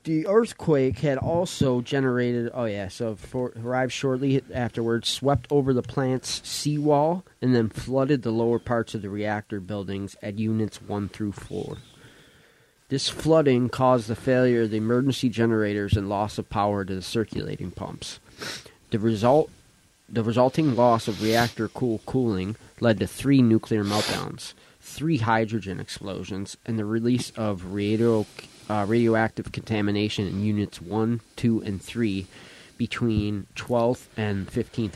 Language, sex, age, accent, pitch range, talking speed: English, male, 20-39, American, 105-125 Hz, 145 wpm